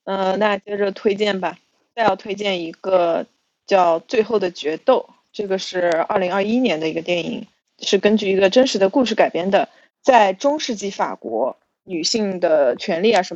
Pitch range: 185-230 Hz